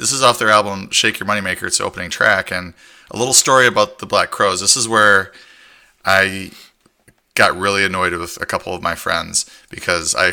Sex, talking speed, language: male, 210 wpm, English